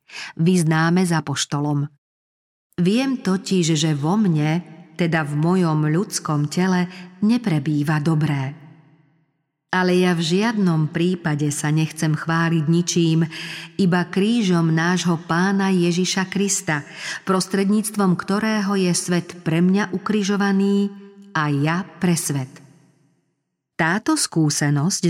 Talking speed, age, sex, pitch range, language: 105 wpm, 50-69, female, 155-190 Hz, Slovak